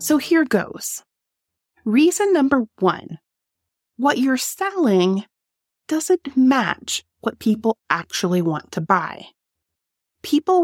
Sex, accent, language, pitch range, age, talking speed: female, American, English, 185-270 Hz, 30-49, 100 wpm